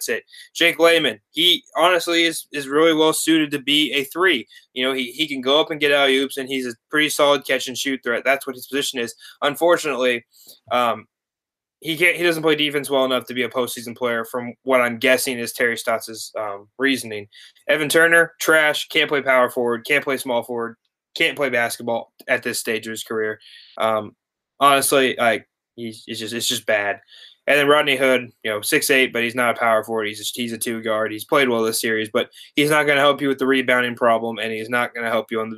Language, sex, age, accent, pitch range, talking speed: English, male, 20-39, American, 120-145 Hz, 230 wpm